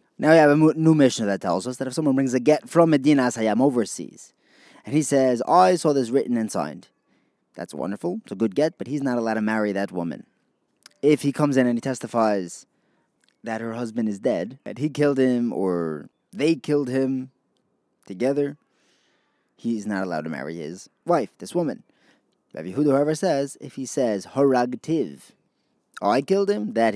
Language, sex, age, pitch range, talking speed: English, male, 20-39, 110-145 Hz, 190 wpm